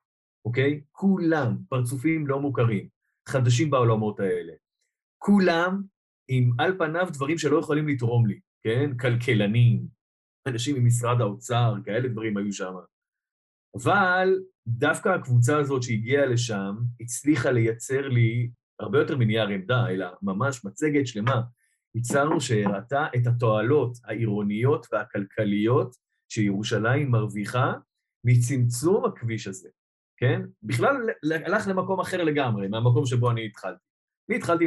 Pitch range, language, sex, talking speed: 110-145 Hz, Hebrew, male, 115 wpm